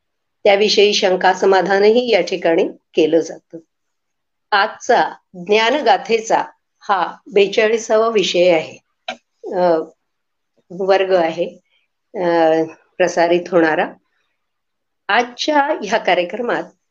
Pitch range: 185-225 Hz